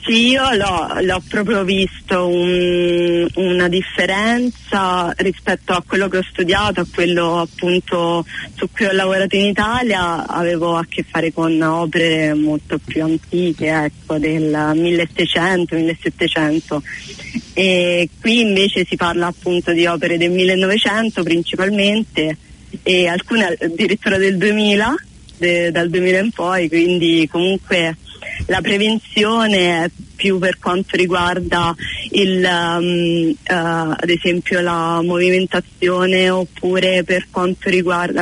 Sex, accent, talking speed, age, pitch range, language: female, native, 120 wpm, 30-49, 170-185 Hz, Italian